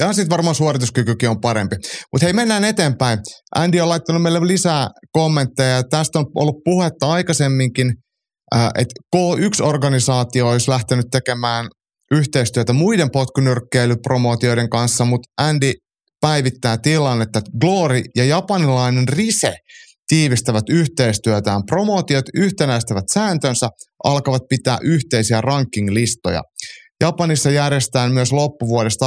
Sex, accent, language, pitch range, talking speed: male, native, Finnish, 115-150 Hz, 110 wpm